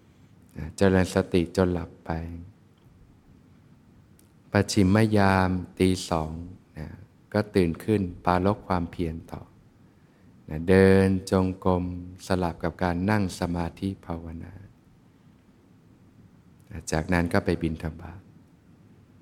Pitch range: 85-100 Hz